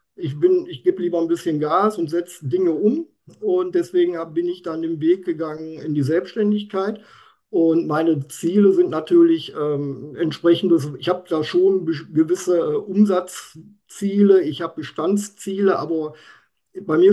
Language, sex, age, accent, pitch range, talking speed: German, male, 50-69, German, 165-205 Hz, 145 wpm